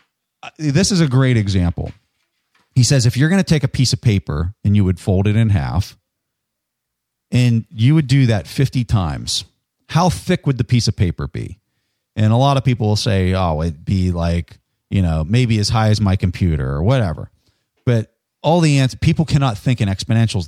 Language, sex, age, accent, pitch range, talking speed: English, male, 40-59, American, 95-130 Hz, 200 wpm